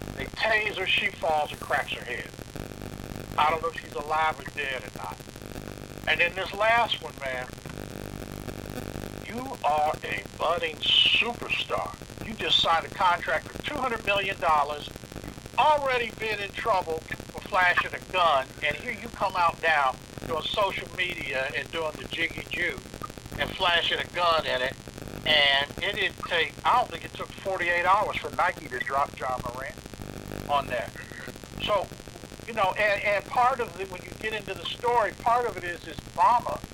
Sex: male